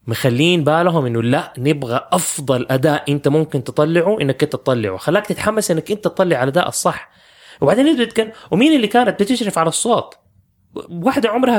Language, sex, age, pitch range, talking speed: English, male, 20-39, 125-175 Hz, 160 wpm